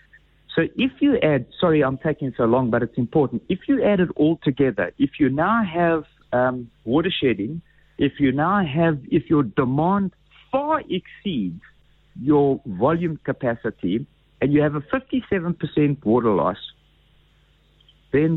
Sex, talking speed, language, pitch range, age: male, 155 wpm, English, 135-190 Hz, 60-79